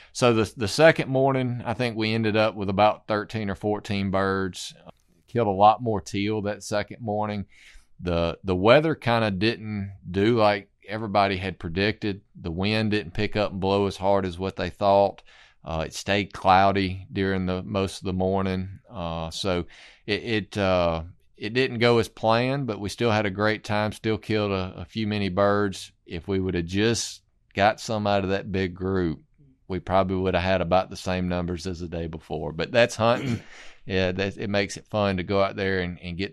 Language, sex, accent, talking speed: English, male, American, 205 wpm